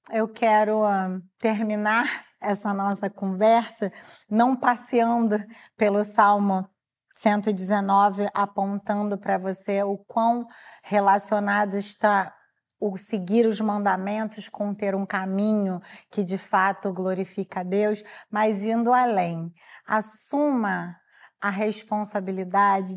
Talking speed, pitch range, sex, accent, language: 100 wpm, 200-230 Hz, female, Brazilian, English